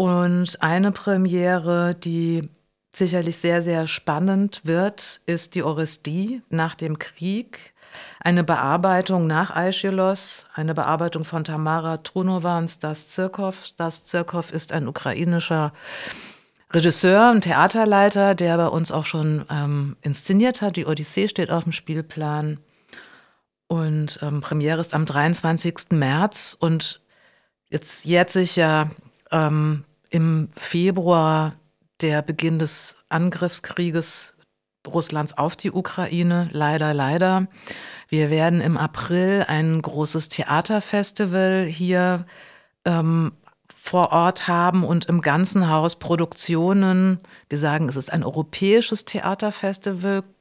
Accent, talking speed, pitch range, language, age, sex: German, 115 wpm, 160-185 Hz, German, 50-69, female